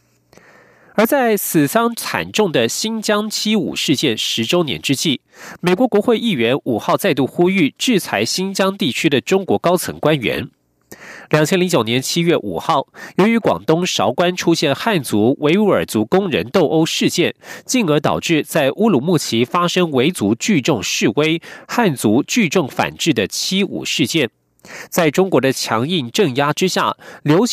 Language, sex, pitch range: German, male, 135-195 Hz